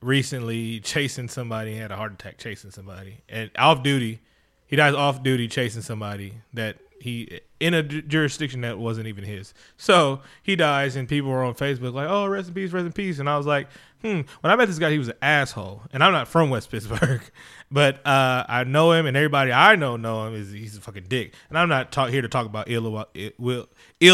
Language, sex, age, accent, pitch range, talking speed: English, male, 20-39, American, 115-150 Hz, 230 wpm